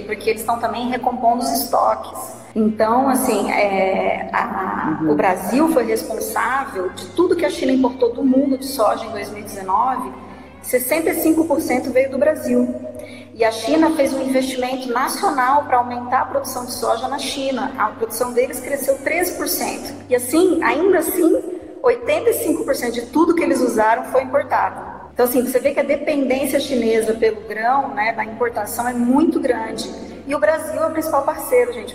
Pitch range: 235-295 Hz